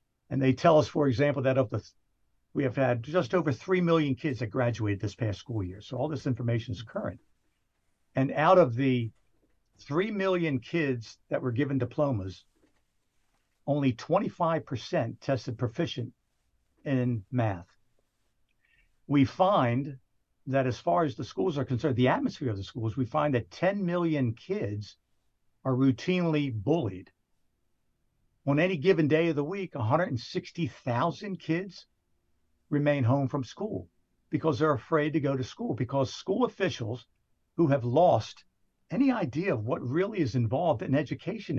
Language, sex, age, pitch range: English, male, 60-79, 115-155 Hz